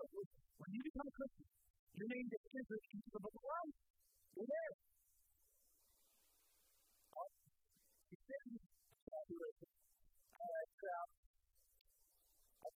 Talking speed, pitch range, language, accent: 90 wpm, 205-270 Hz, English, American